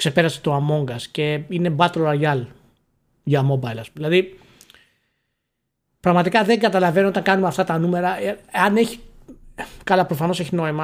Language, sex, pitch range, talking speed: Greek, male, 130-175 Hz, 145 wpm